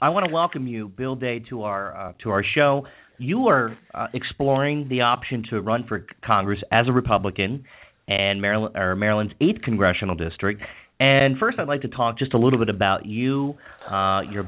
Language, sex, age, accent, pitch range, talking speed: English, male, 30-49, American, 100-125 Hz, 200 wpm